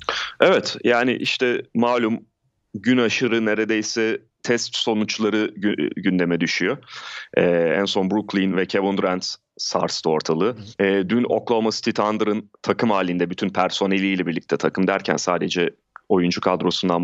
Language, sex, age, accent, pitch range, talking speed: Turkish, male, 30-49, native, 100-115 Hz, 120 wpm